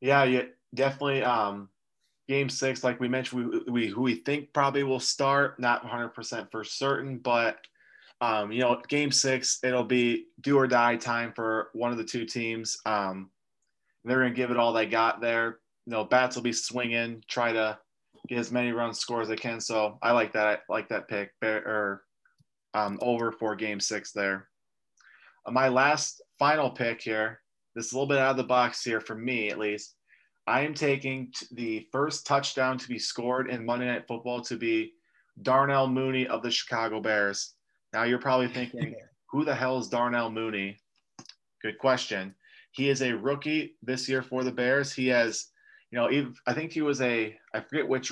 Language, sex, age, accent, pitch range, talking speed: English, male, 20-39, American, 110-130 Hz, 190 wpm